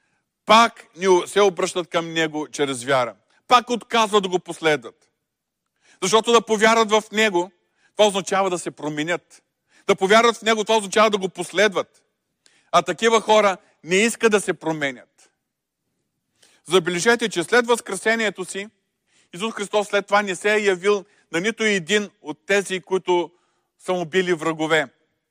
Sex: male